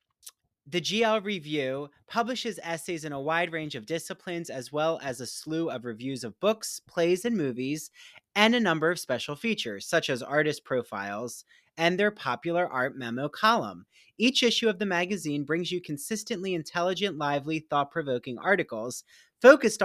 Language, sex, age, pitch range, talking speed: English, male, 30-49, 145-190 Hz, 155 wpm